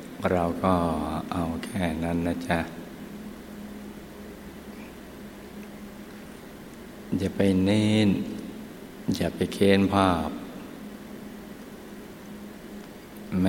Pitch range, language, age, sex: 85-95 Hz, Thai, 60-79, male